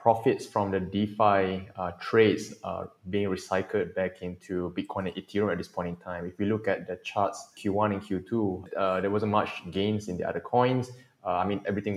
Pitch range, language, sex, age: 95-105 Hz, English, male, 20-39